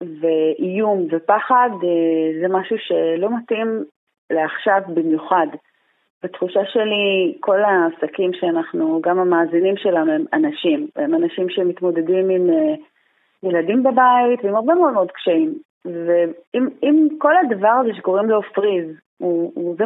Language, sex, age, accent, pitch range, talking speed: Hebrew, female, 30-49, native, 175-220 Hz, 110 wpm